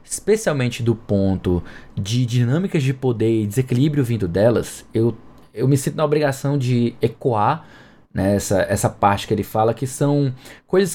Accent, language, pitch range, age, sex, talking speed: Brazilian, Portuguese, 115-155 Hz, 20-39, male, 160 wpm